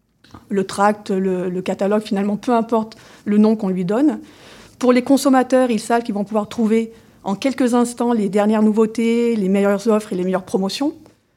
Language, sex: French, female